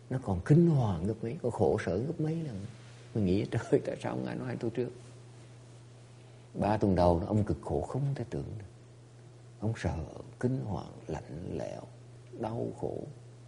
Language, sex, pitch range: English, male, 100-120 Hz